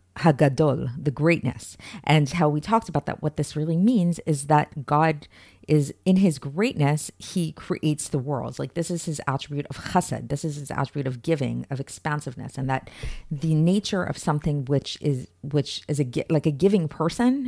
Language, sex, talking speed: English, female, 180 wpm